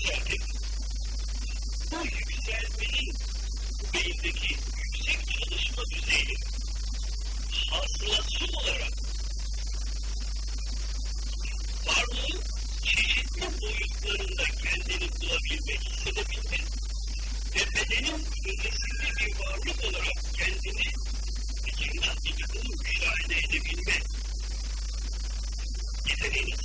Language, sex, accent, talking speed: Turkish, female, American, 55 wpm